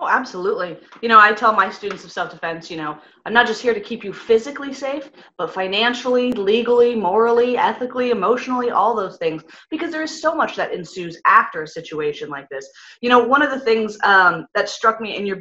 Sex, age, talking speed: female, 20-39, 210 wpm